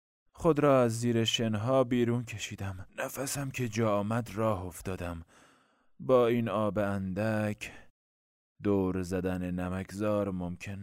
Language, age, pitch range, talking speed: Persian, 30-49, 90-115 Hz, 115 wpm